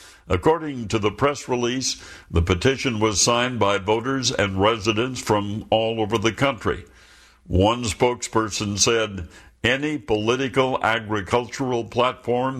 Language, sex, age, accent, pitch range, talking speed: English, male, 60-79, American, 100-120 Hz, 120 wpm